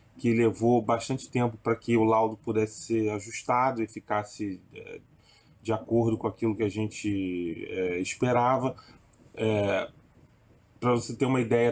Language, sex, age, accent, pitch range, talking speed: Portuguese, male, 20-39, Brazilian, 110-135 Hz, 140 wpm